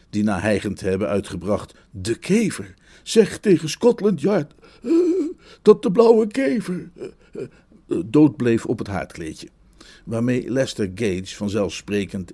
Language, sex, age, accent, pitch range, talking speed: Dutch, male, 50-69, Dutch, 100-125 Hz, 125 wpm